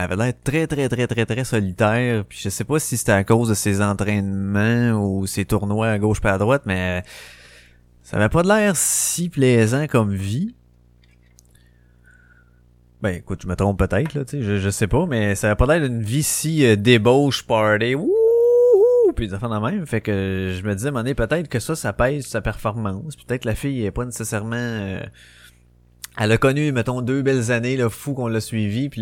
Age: 20-39